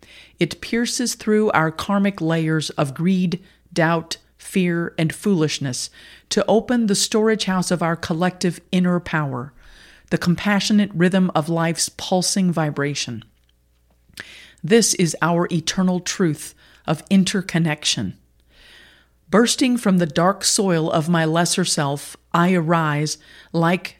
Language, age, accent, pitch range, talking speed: English, 40-59, American, 160-195 Hz, 120 wpm